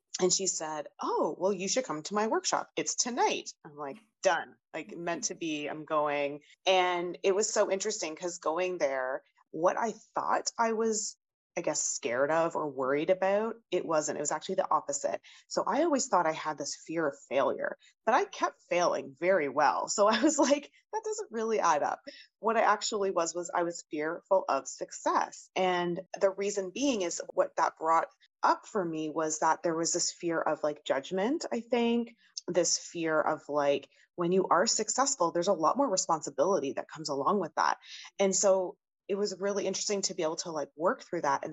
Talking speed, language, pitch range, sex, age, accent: 200 wpm, English, 160-215 Hz, female, 30-49, American